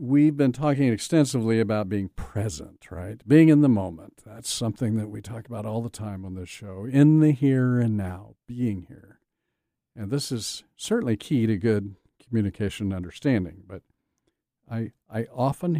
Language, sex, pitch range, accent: English, male, 105-135 Hz, American